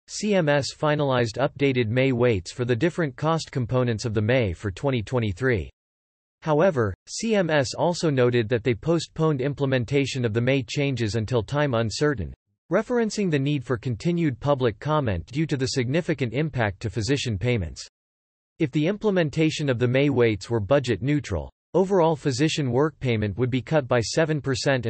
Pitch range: 115-150 Hz